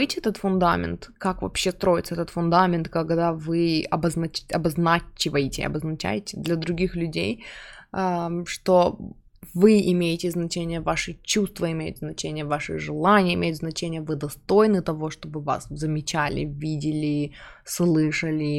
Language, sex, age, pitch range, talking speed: Russian, female, 20-39, 160-185 Hz, 115 wpm